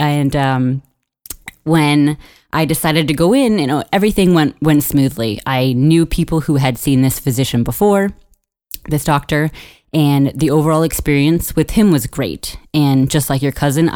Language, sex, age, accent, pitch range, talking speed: English, female, 20-39, American, 125-155 Hz, 165 wpm